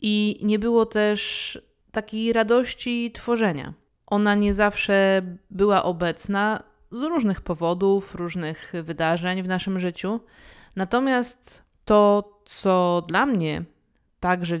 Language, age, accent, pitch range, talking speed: Polish, 20-39, native, 175-205 Hz, 105 wpm